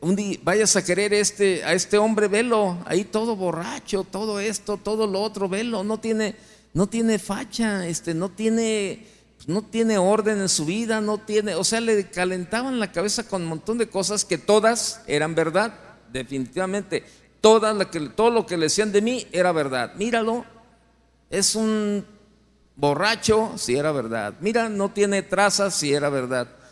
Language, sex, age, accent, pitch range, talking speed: Spanish, male, 50-69, Mexican, 150-210 Hz, 175 wpm